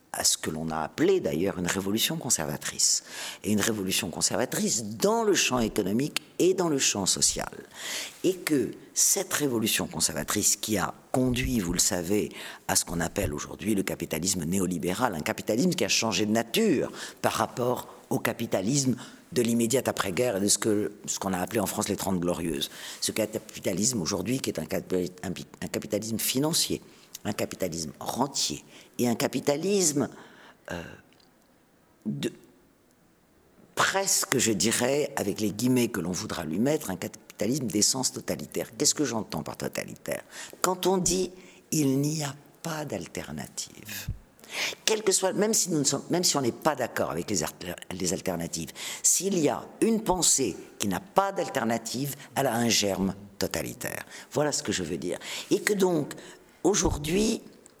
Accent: French